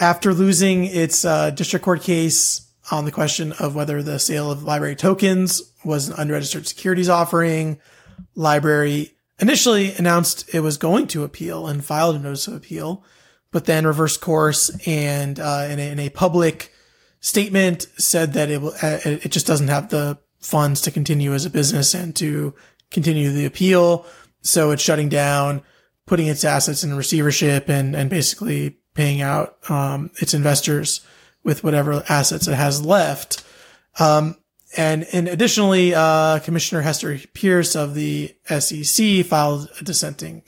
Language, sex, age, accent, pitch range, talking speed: English, male, 30-49, American, 150-175 Hz, 155 wpm